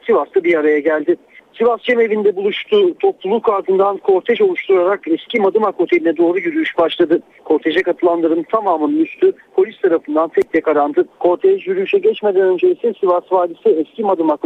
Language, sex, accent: Turkish, male, native